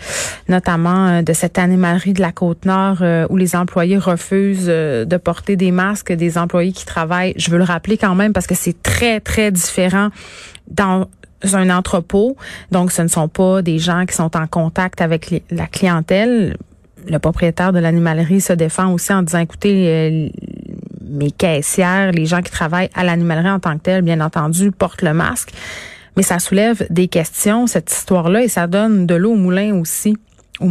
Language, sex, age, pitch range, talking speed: French, female, 30-49, 175-200 Hz, 185 wpm